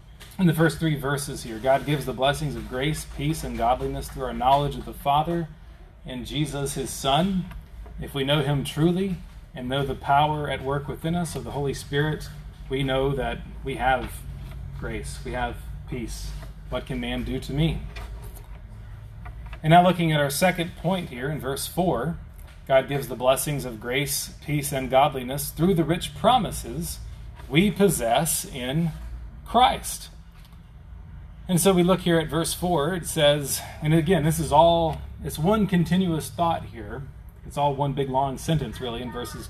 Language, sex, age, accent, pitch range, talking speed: English, male, 30-49, American, 130-170 Hz, 175 wpm